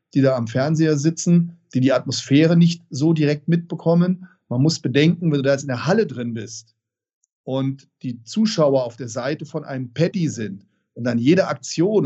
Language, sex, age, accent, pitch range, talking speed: German, male, 40-59, German, 130-170 Hz, 190 wpm